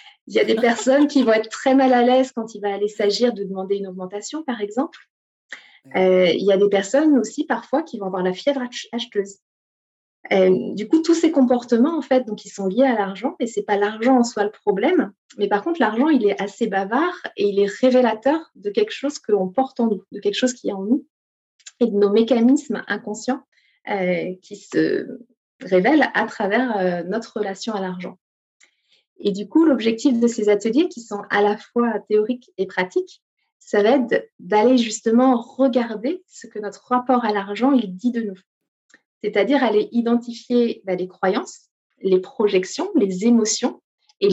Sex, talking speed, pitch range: female, 195 wpm, 205-265 Hz